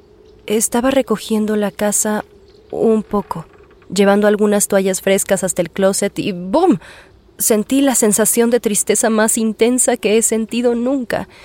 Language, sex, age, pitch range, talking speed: English, female, 20-39, 195-230 Hz, 135 wpm